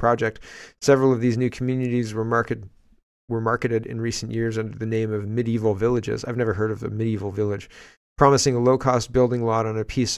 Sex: male